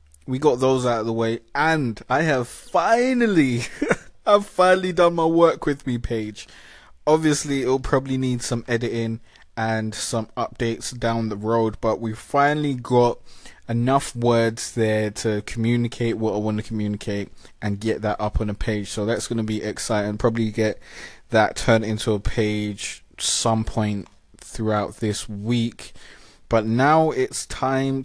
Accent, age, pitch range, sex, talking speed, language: British, 20-39, 110-125 Hz, male, 160 wpm, English